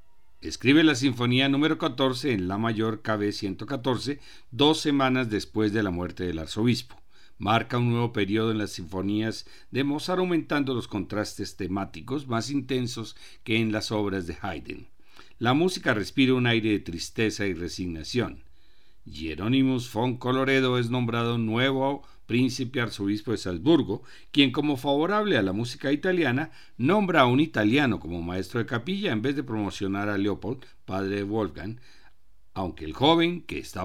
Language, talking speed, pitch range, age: Spanish, 155 wpm, 100-140 Hz, 50-69